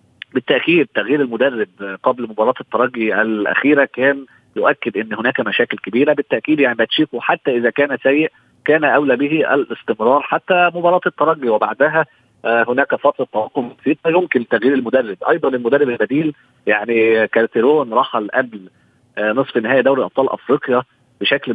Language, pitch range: Arabic, 115-140 Hz